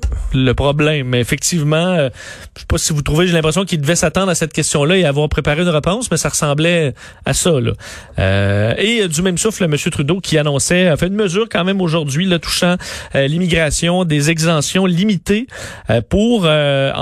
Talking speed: 200 wpm